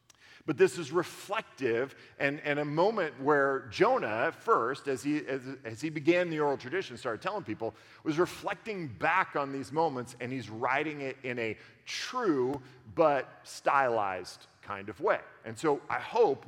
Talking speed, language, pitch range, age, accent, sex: 170 wpm, English, 120-155 Hz, 50-69, American, male